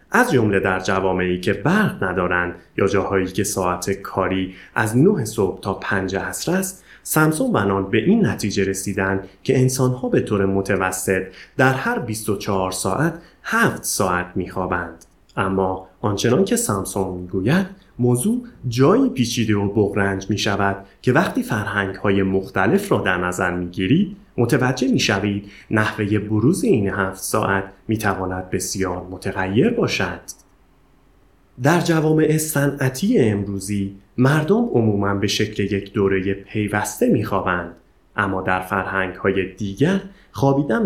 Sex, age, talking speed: male, 30-49, 125 wpm